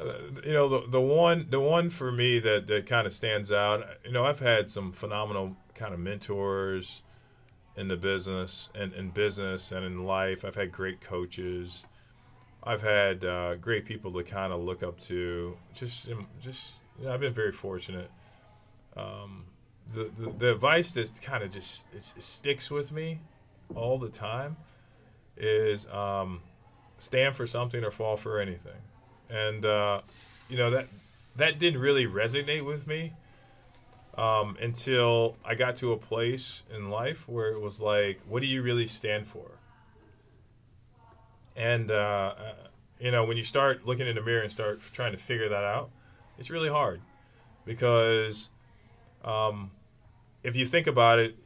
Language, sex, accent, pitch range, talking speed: English, male, American, 105-125 Hz, 165 wpm